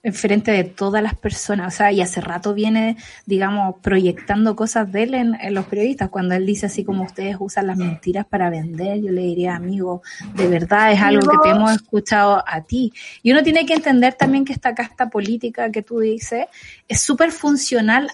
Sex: female